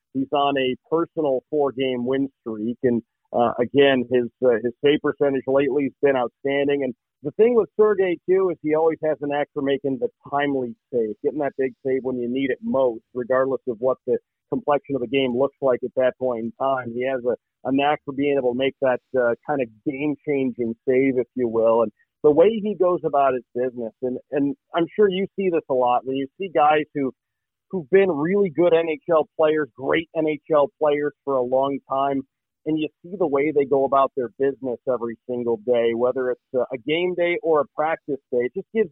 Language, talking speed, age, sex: English, 215 wpm, 40-59, male